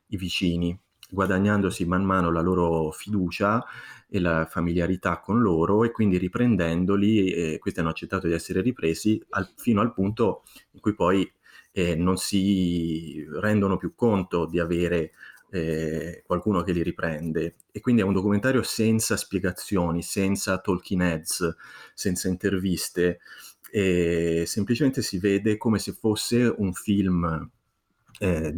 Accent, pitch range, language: native, 85-100 Hz, Italian